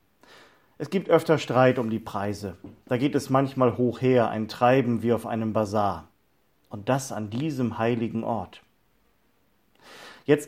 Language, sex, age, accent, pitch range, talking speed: German, male, 40-59, German, 110-135 Hz, 150 wpm